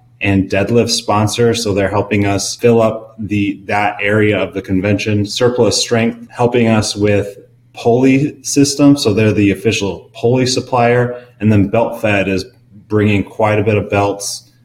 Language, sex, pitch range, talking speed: English, male, 100-120 Hz, 160 wpm